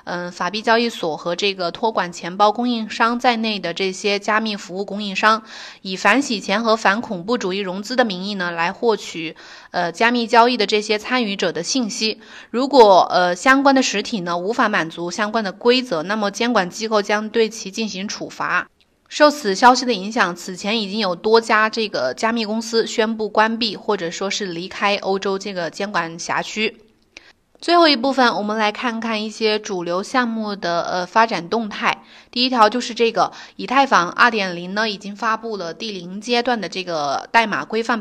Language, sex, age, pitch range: Chinese, female, 20-39, 195-230 Hz